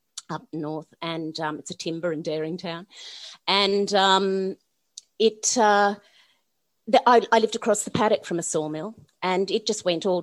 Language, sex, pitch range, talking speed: English, female, 160-210 Hz, 170 wpm